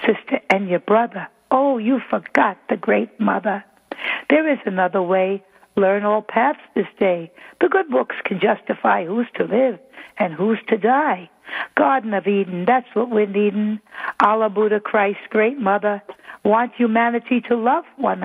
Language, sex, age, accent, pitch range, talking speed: English, female, 60-79, American, 200-255 Hz, 160 wpm